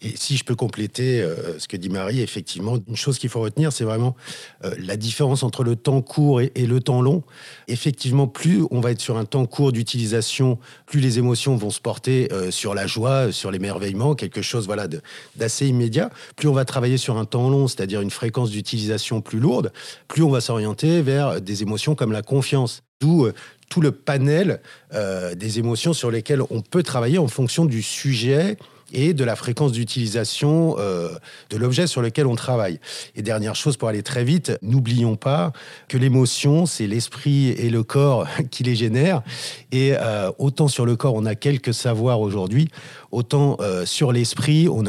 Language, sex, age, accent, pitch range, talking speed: French, male, 50-69, French, 110-140 Hz, 190 wpm